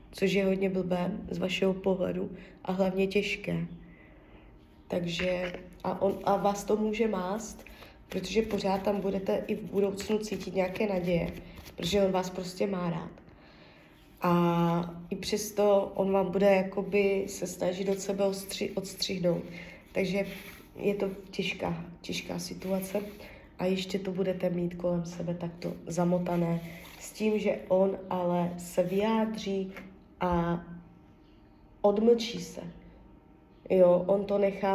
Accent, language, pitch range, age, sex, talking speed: native, Czech, 180-200 Hz, 20-39, female, 130 wpm